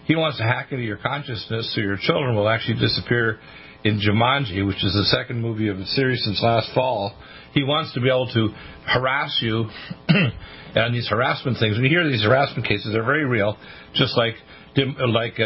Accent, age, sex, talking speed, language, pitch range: American, 50-69, male, 190 wpm, English, 105-130 Hz